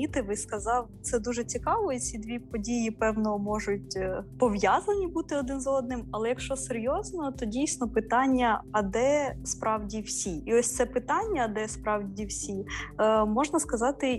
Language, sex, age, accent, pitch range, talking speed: Ukrainian, female, 20-39, native, 205-255 Hz, 150 wpm